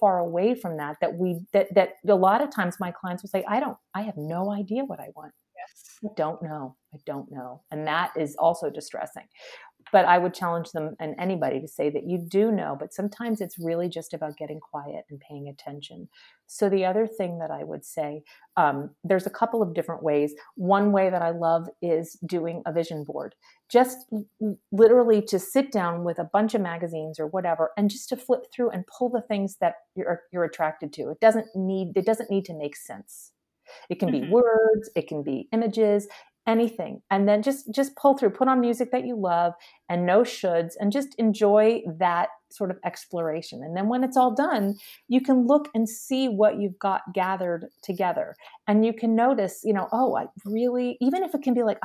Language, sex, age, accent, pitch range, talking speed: English, female, 40-59, American, 170-230 Hz, 210 wpm